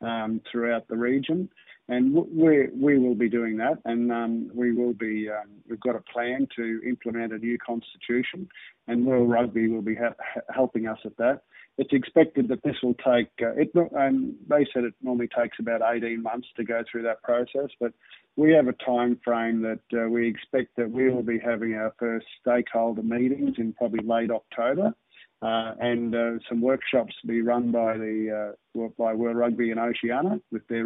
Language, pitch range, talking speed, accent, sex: English, 115-125 Hz, 190 wpm, Australian, male